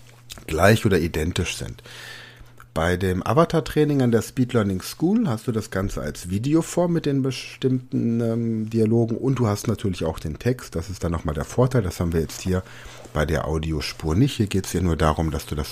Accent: German